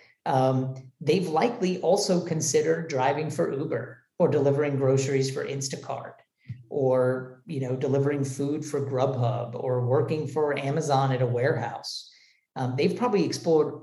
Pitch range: 125-155 Hz